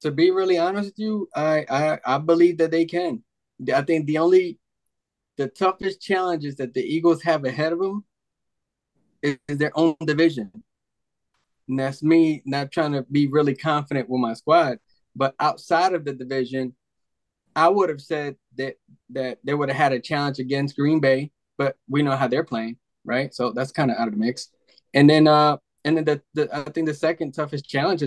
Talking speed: 195 wpm